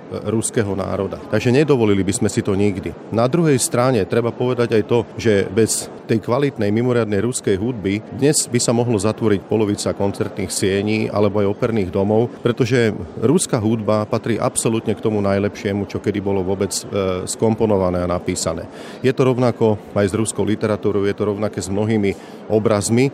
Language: Slovak